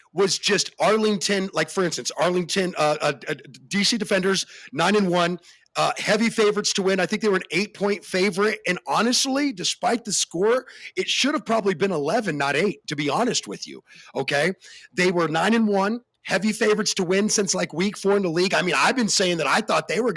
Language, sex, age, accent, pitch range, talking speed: English, male, 40-59, American, 165-215 Hz, 215 wpm